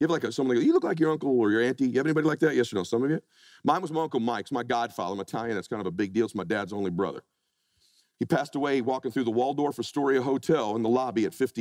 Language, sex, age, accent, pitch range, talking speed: English, male, 40-59, American, 120-155 Hz, 305 wpm